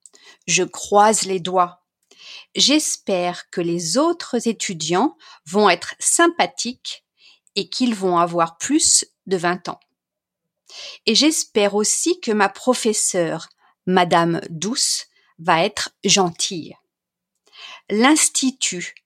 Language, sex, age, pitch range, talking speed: French, female, 50-69, 185-270 Hz, 100 wpm